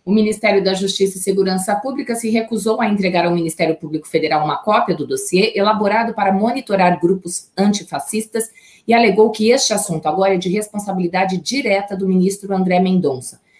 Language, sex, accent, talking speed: Portuguese, female, Brazilian, 170 wpm